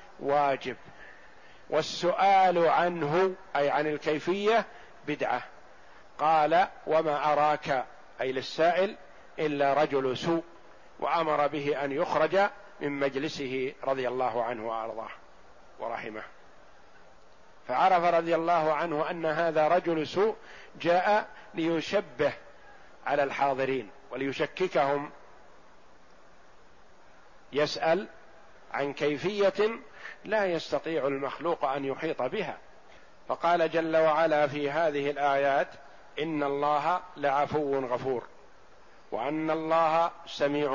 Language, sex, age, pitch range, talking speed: Arabic, male, 50-69, 140-165 Hz, 90 wpm